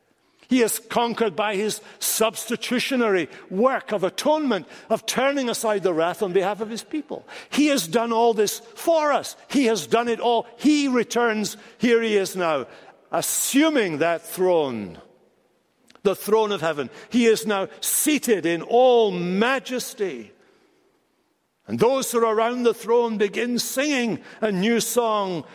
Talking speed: 150 wpm